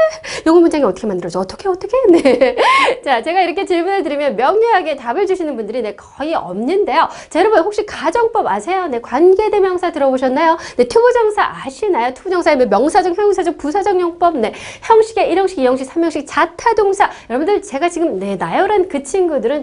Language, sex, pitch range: Korean, female, 260-405 Hz